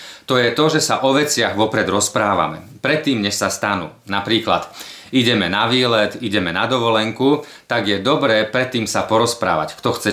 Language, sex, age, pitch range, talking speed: Slovak, male, 40-59, 100-125 Hz, 165 wpm